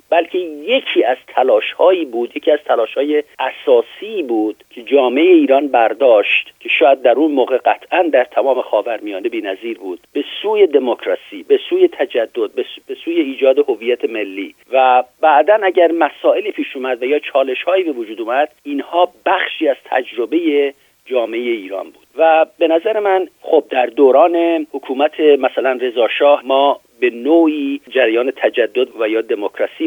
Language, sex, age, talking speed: Persian, male, 50-69, 145 wpm